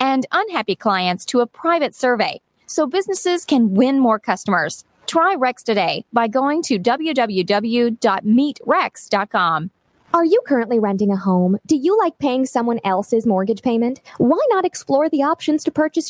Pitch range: 210-295 Hz